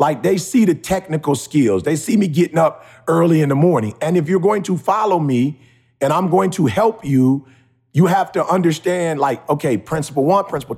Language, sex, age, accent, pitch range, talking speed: English, male, 40-59, American, 140-190 Hz, 205 wpm